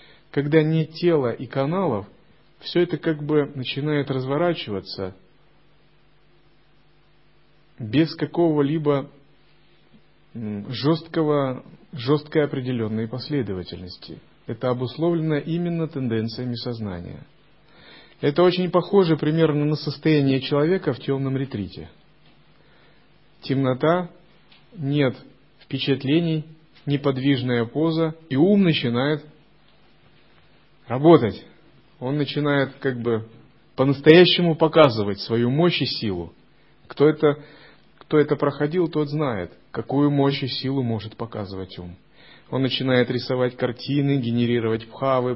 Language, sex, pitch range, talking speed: Russian, male, 120-155 Hz, 95 wpm